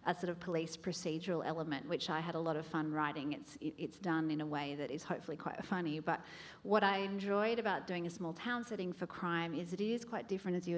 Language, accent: English, Australian